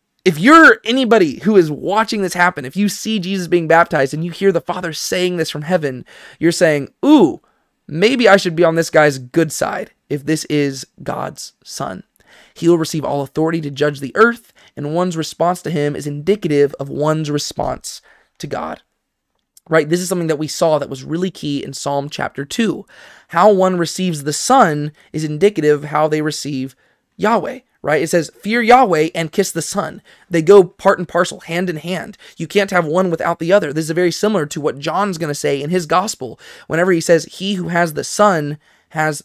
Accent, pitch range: American, 150-185 Hz